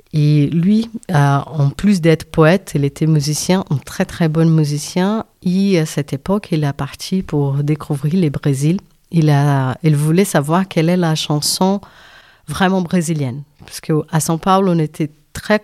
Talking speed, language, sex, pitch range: 170 wpm, French, female, 150-180 Hz